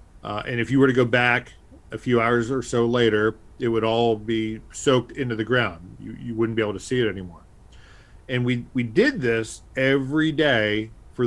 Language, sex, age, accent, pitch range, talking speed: English, male, 40-59, American, 110-130 Hz, 210 wpm